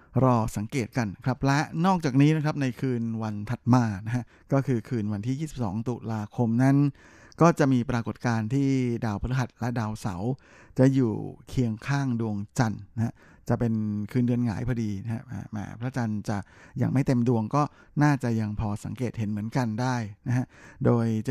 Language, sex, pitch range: Thai, male, 110-135 Hz